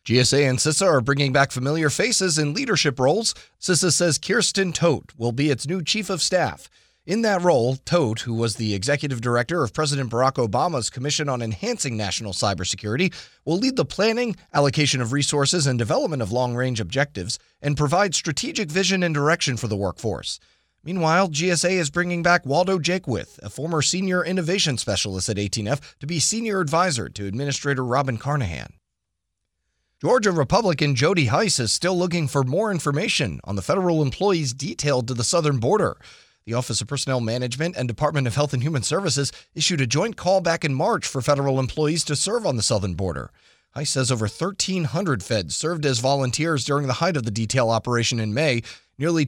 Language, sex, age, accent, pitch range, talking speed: English, male, 30-49, American, 120-170 Hz, 180 wpm